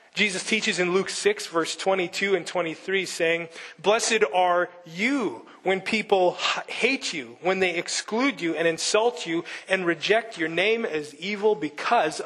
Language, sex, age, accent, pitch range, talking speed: English, male, 30-49, American, 165-210 Hz, 150 wpm